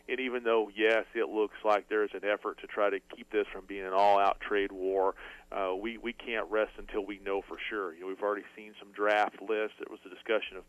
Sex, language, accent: male, English, American